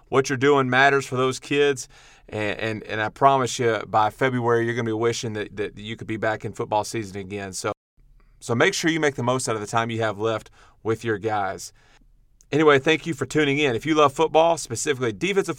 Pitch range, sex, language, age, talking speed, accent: 115-140 Hz, male, English, 40-59, 230 wpm, American